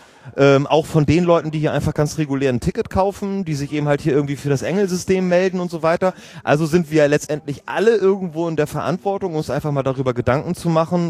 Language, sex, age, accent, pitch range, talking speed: German, male, 30-49, German, 130-165 Hz, 225 wpm